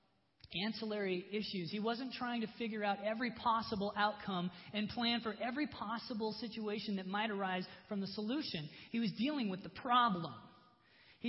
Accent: American